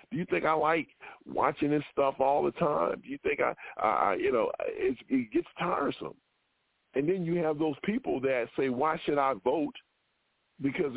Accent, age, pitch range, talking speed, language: American, 40-59, 140-215 Hz, 190 wpm, English